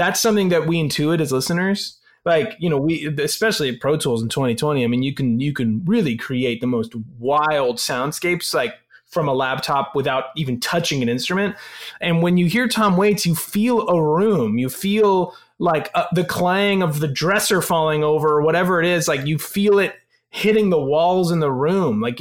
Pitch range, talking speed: 140-185 Hz, 200 wpm